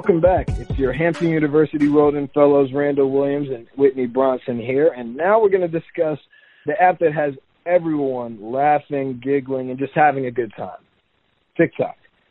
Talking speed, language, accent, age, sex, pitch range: 165 wpm, English, American, 40-59, male, 130-170 Hz